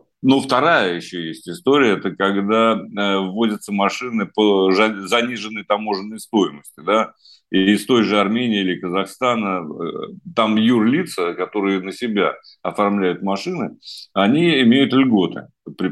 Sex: male